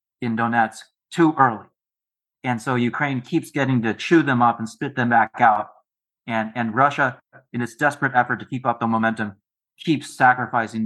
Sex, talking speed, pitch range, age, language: male, 175 wpm, 115-150 Hz, 30-49, English